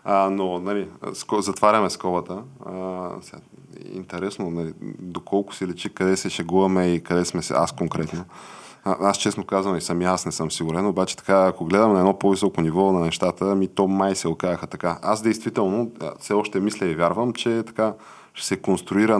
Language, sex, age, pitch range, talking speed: Bulgarian, male, 20-39, 90-105 Hz, 180 wpm